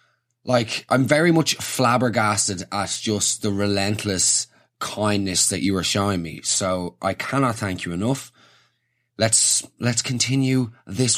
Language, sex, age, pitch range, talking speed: English, male, 20-39, 100-125 Hz, 135 wpm